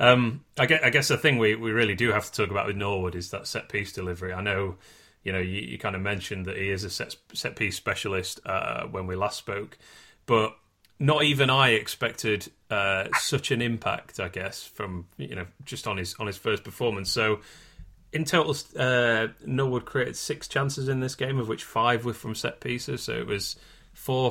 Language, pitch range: English, 95-130 Hz